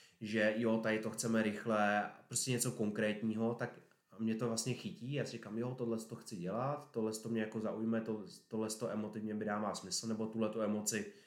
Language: Czech